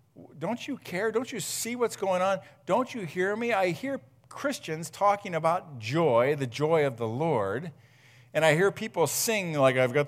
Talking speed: 190 wpm